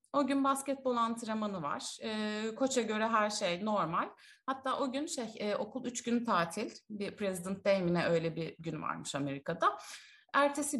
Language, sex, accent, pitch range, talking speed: Turkish, female, native, 200-280 Hz, 160 wpm